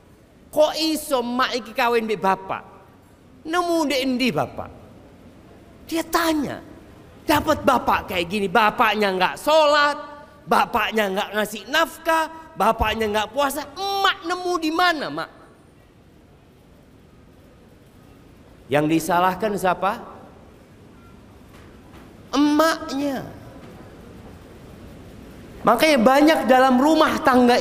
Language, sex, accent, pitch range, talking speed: Indonesian, male, native, 195-275 Hz, 85 wpm